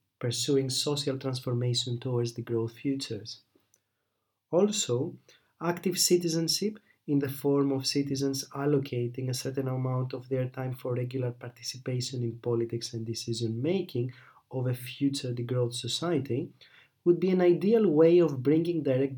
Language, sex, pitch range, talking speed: English, male, 120-155 Hz, 135 wpm